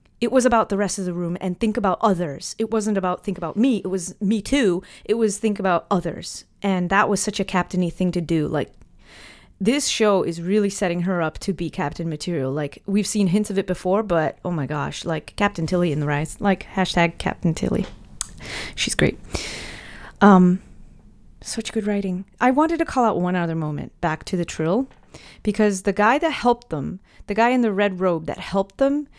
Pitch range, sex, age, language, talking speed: 180-220 Hz, female, 30-49, English, 210 wpm